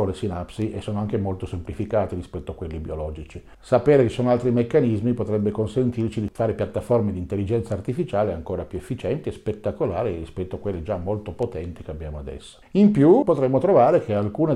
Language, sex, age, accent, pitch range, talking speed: Italian, male, 50-69, native, 95-125 Hz, 185 wpm